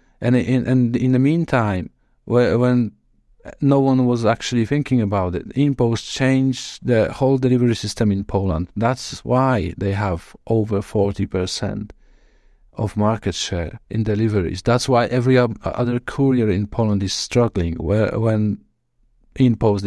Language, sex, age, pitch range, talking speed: English, male, 50-69, 100-125 Hz, 140 wpm